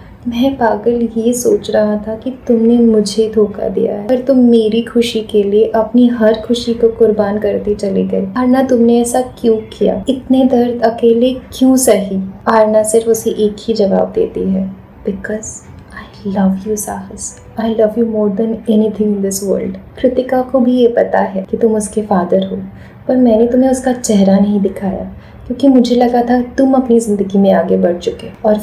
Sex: female